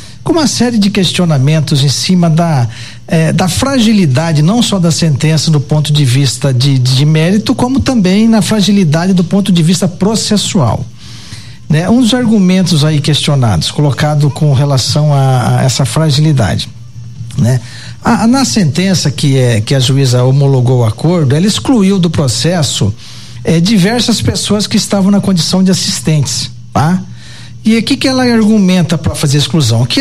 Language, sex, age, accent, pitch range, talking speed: Portuguese, male, 60-79, Brazilian, 135-195 Hz, 170 wpm